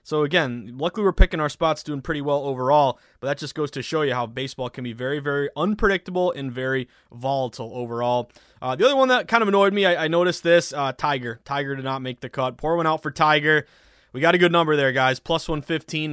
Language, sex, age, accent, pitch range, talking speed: English, male, 20-39, American, 130-165 Hz, 240 wpm